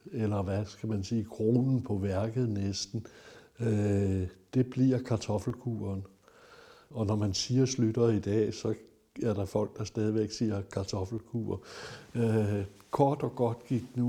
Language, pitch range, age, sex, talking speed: Danish, 105-120 Hz, 60-79, male, 145 wpm